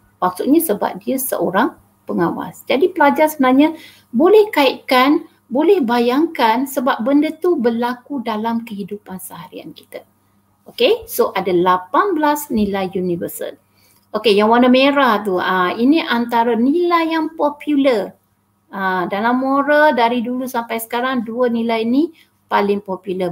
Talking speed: 125 wpm